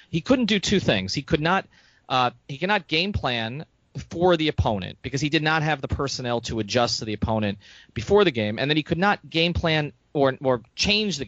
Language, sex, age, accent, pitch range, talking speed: English, male, 30-49, American, 110-150 Hz, 225 wpm